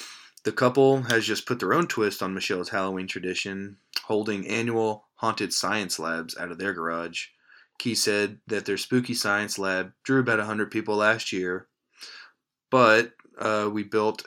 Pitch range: 95-115 Hz